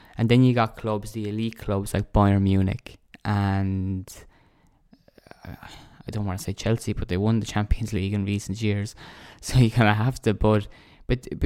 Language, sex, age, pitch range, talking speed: English, male, 20-39, 100-125 Hz, 185 wpm